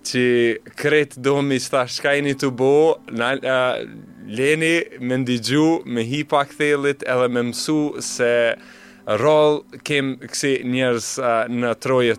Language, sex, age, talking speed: English, male, 30-49, 130 wpm